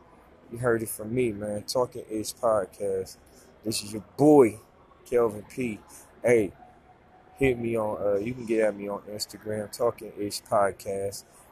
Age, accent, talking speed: 20-39, American, 155 wpm